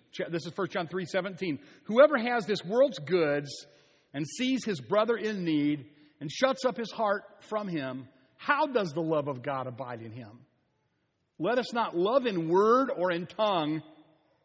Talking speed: 175 wpm